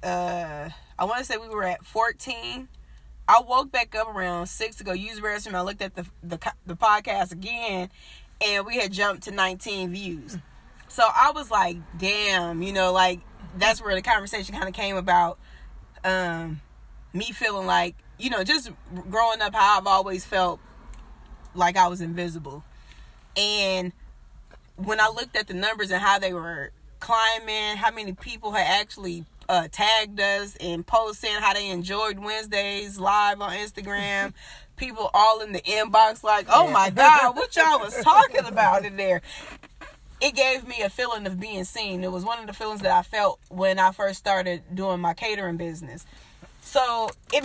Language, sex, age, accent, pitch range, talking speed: English, female, 20-39, American, 180-220 Hz, 175 wpm